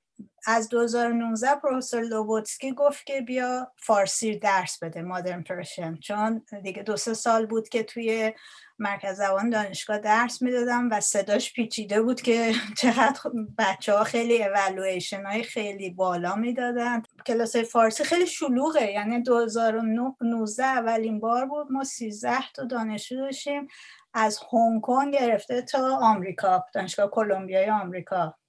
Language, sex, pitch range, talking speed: Persian, female, 200-250 Hz, 125 wpm